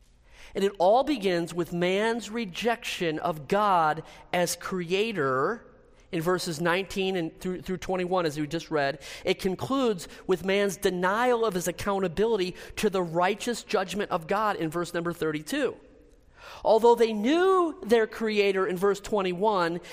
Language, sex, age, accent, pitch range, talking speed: English, male, 40-59, American, 160-205 Hz, 145 wpm